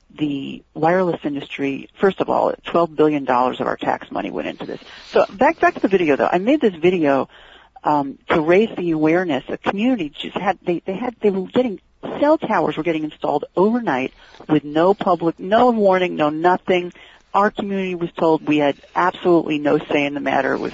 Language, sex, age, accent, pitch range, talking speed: English, female, 40-59, American, 150-180 Hz, 195 wpm